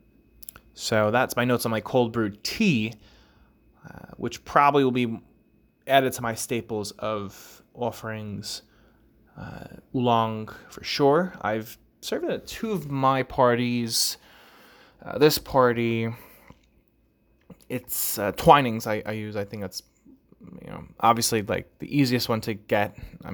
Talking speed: 140 wpm